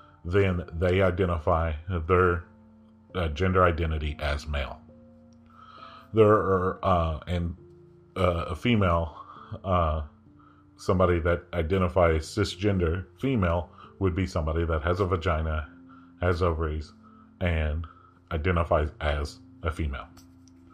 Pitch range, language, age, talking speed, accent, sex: 85-100 Hz, English, 40-59, 105 wpm, American, male